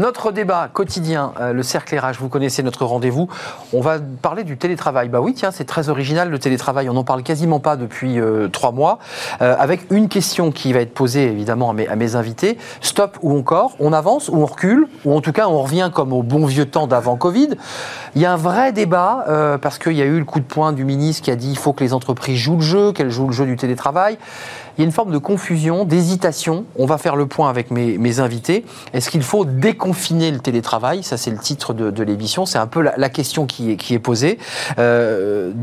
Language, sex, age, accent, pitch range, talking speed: French, male, 30-49, French, 120-160 Hz, 240 wpm